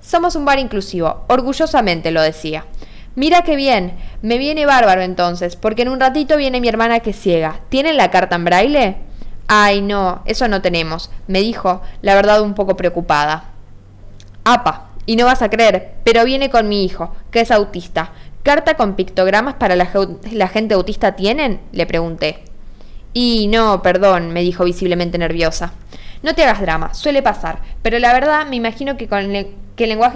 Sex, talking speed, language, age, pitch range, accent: female, 180 wpm, Spanish, 10-29, 175-245 Hz, Argentinian